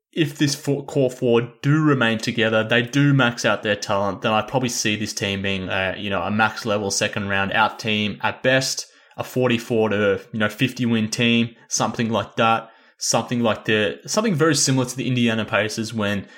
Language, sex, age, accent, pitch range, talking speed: English, male, 20-39, Australian, 110-130 Hz, 200 wpm